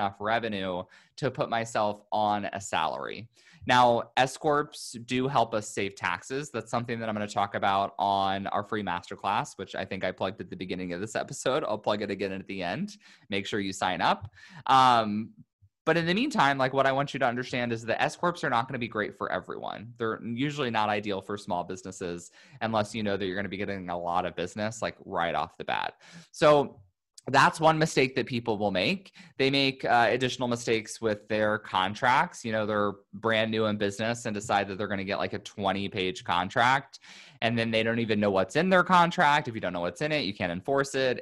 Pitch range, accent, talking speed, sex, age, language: 100-125 Hz, American, 225 wpm, male, 20-39, English